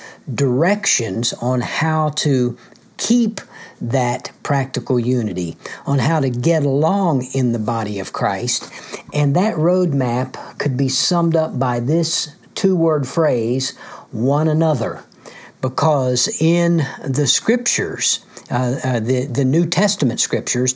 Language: English